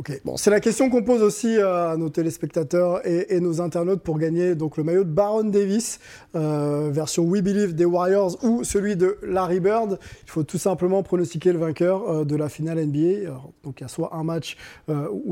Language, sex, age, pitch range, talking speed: French, male, 20-39, 155-185 Hz, 210 wpm